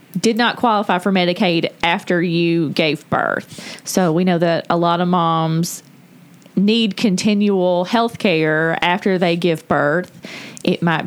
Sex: female